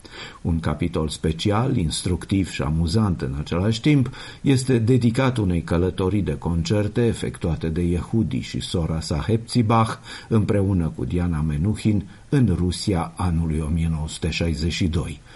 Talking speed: 115 wpm